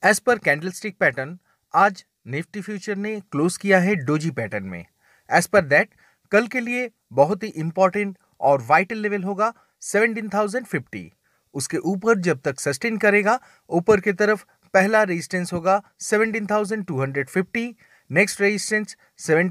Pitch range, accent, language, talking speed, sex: 165-220 Hz, native, Hindi, 130 wpm, male